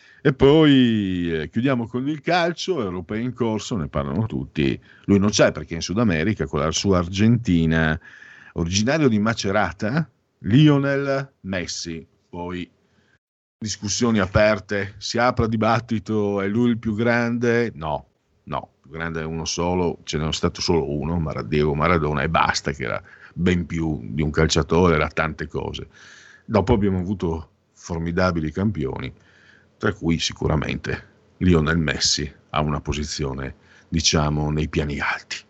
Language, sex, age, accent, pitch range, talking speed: Italian, male, 50-69, native, 80-110 Hz, 140 wpm